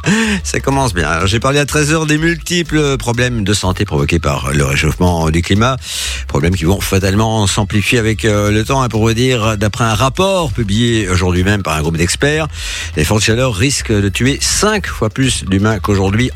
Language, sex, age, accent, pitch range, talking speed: French, male, 50-69, French, 85-125 Hz, 190 wpm